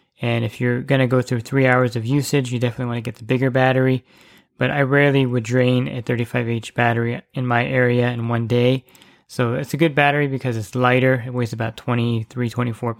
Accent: American